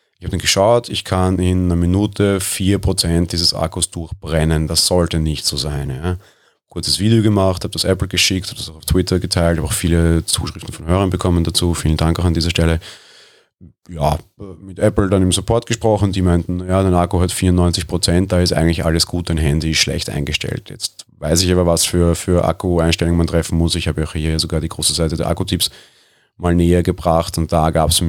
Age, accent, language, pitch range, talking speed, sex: 30-49, German, German, 85-105 Hz, 205 wpm, male